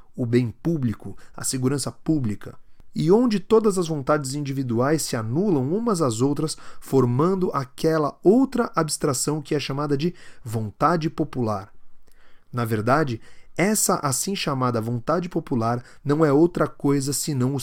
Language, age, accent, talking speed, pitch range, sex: Portuguese, 30-49, Brazilian, 135 wpm, 120-160 Hz, male